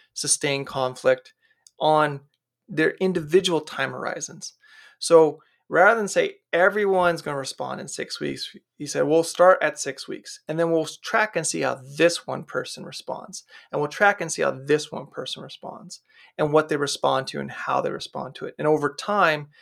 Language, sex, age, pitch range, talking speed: English, male, 30-49, 140-175 Hz, 185 wpm